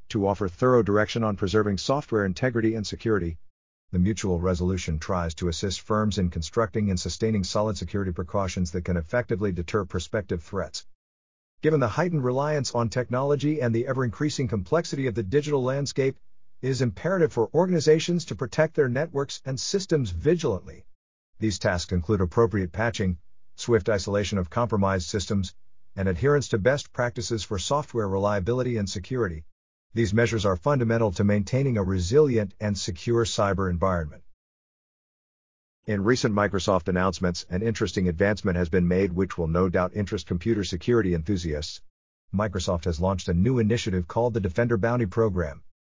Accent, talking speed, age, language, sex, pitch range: American, 155 wpm, 50-69, English, male, 95-120 Hz